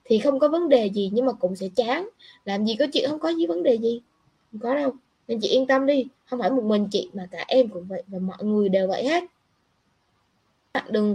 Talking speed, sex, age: 255 wpm, female, 20-39